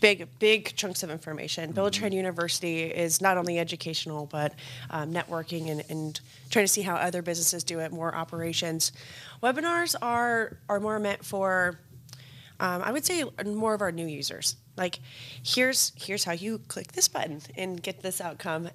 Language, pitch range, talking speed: English, 155-190 Hz, 175 wpm